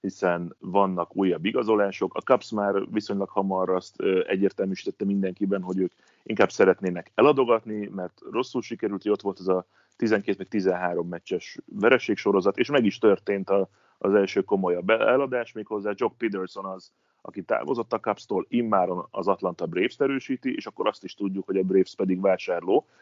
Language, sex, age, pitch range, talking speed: Hungarian, male, 30-49, 95-105 Hz, 155 wpm